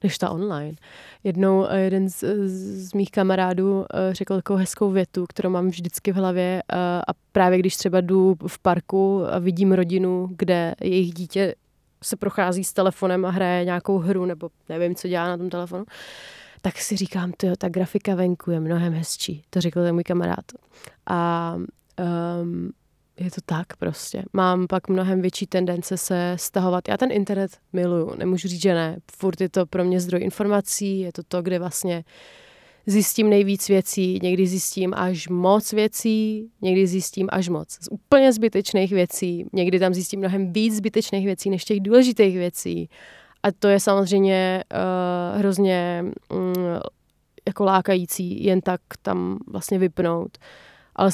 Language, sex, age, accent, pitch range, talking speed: Czech, female, 20-39, native, 180-195 Hz, 160 wpm